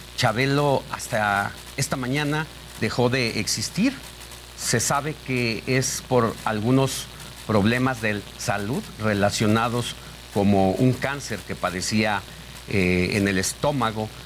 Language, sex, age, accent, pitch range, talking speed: Spanish, male, 50-69, Mexican, 100-125 Hz, 110 wpm